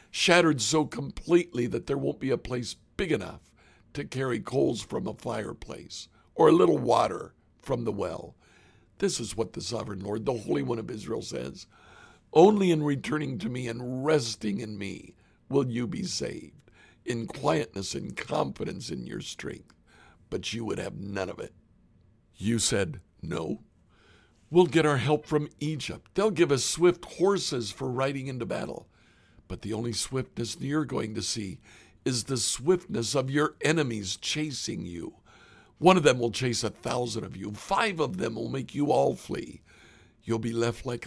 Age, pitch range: 60-79, 110-150 Hz